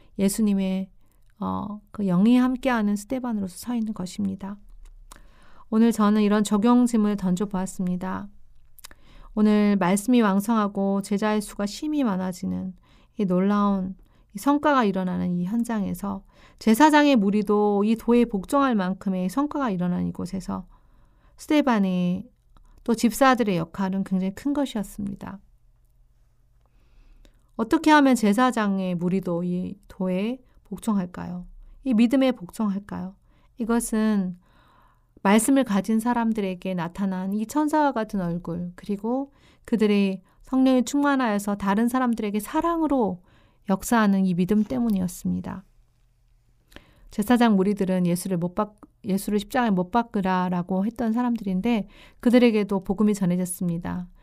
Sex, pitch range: female, 185-230 Hz